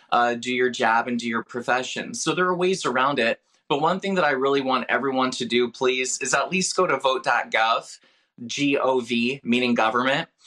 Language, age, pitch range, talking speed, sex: English, 20-39, 120-155 Hz, 195 wpm, male